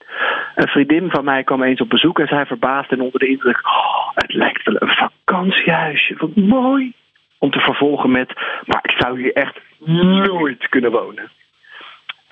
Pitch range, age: 135-190 Hz, 40-59